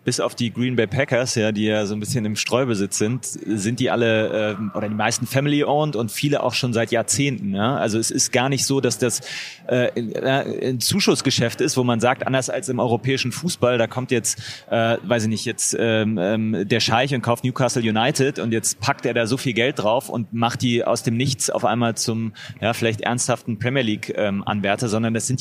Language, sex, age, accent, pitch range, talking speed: German, male, 30-49, German, 115-130 Hz, 220 wpm